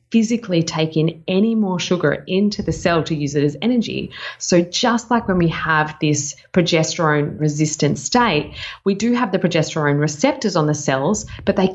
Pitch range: 150-185 Hz